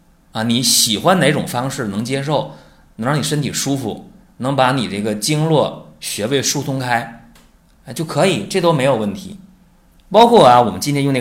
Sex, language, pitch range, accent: male, Chinese, 105-165 Hz, native